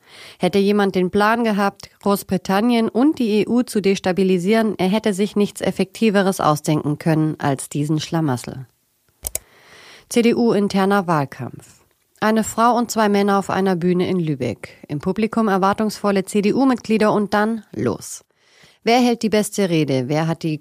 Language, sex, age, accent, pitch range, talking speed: German, female, 30-49, German, 170-210 Hz, 140 wpm